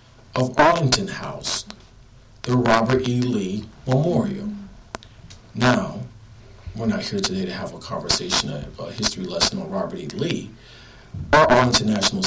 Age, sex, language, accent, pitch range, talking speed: 40-59, male, English, American, 105-125 Hz, 135 wpm